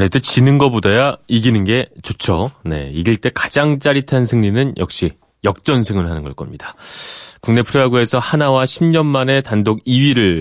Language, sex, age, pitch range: Korean, male, 30-49, 90-135 Hz